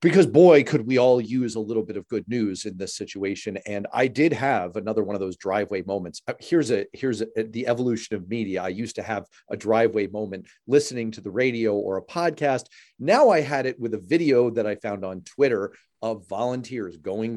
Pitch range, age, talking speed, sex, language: 105-130 Hz, 40-59, 215 wpm, male, English